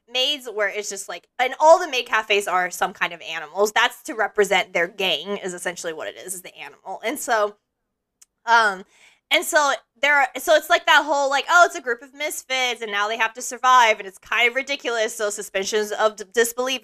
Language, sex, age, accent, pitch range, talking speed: English, female, 20-39, American, 205-265 Hz, 220 wpm